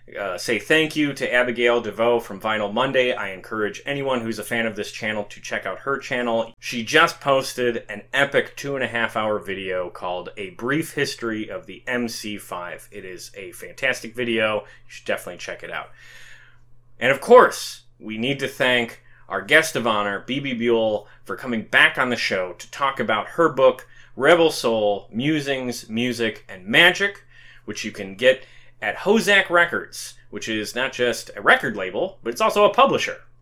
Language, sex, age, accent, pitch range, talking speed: English, male, 30-49, American, 110-140 Hz, 175 wpm